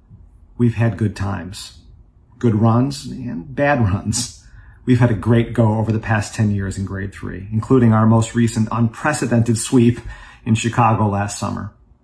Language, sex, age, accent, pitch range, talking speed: English, male, 40-59, American, 110-125 Hz, 160 wpm